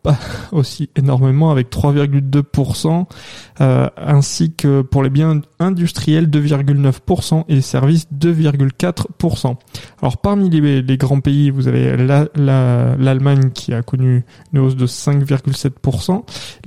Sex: male